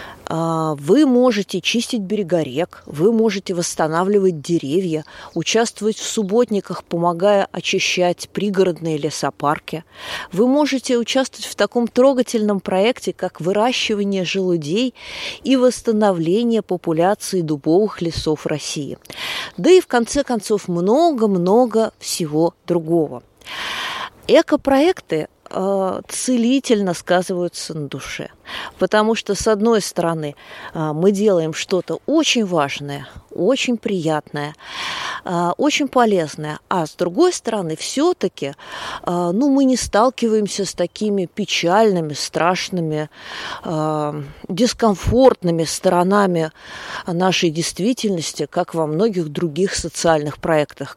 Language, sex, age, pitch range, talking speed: Russian, female, 20-39, 165-235 Hz, 95 wpm